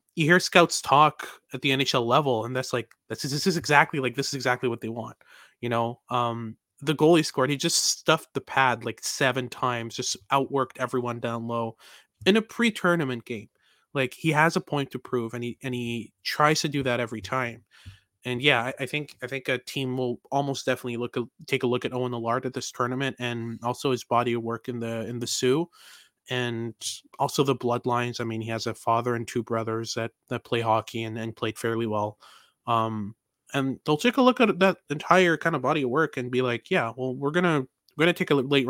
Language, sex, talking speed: English, male, 225 wpm